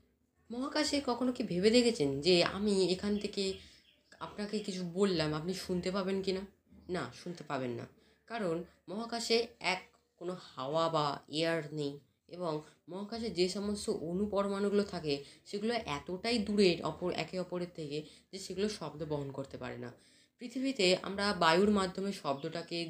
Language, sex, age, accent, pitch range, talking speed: Bengali, female, 20-39, native, 165-215 Hz, 140 wpm